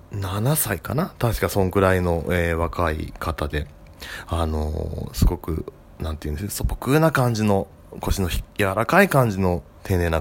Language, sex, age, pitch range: Japanese, male, 20-39, 85-115 Hz